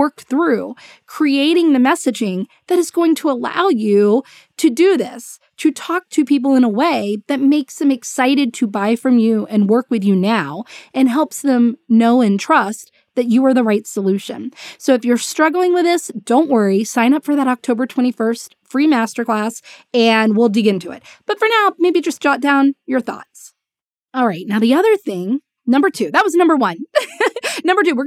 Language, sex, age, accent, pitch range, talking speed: English, female, 20-39, American, 220-310 Hz, 195 wpm